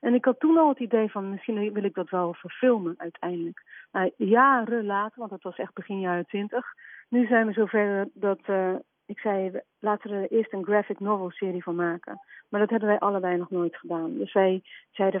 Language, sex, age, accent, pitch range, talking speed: Dutch, female, 40-59, Dutch, 190-245 Hz, 210 wpm